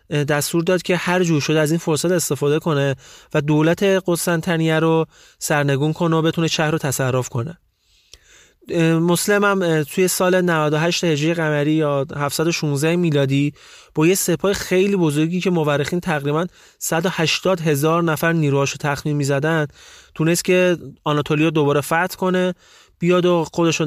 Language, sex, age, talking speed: Persian, male, 30-49, 140 wpm